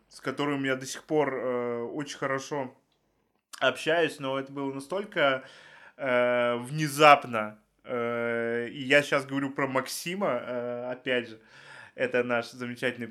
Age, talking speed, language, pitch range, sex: 20-39, 135 wpm, Russian, 120-145 Hz, male